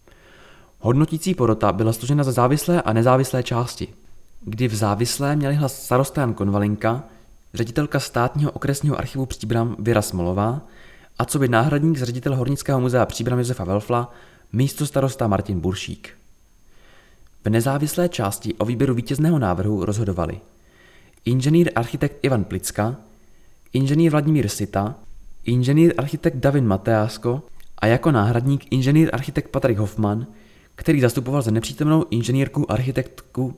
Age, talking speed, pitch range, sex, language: 20-39, 120 wpm, 105-140 Hz, male, Czech